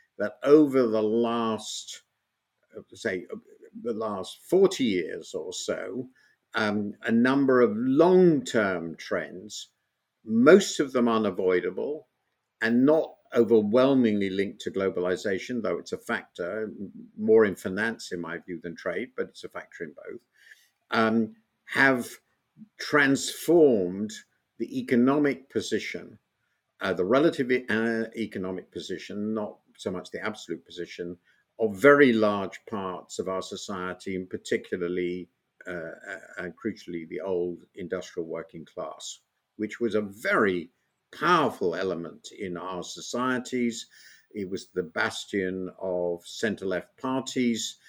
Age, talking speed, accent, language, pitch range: 50-69, 120 wpm, British, English, 95-130 Hz